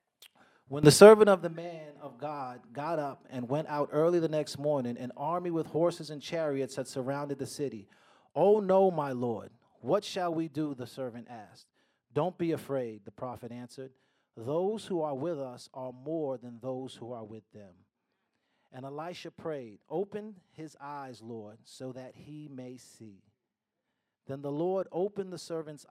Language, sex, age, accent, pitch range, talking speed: English, male, 40-59, American, 125-160 Hz, 175 wpm